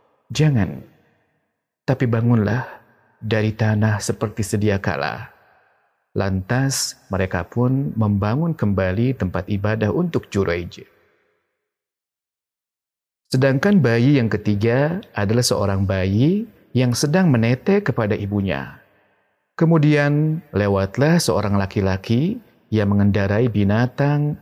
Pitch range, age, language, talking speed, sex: 100-150 Hz, 40-59, Indonesian, 90 wpm, male